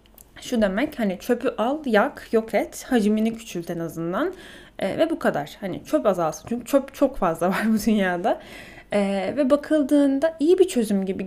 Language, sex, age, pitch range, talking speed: Turkish, female, 10-29, 195-270 Hz, 170 wpm